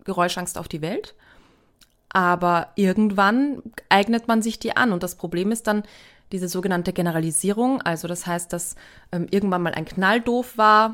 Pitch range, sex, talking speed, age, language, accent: 170-200 Hz, female, 165 wpm, 20-39, German, German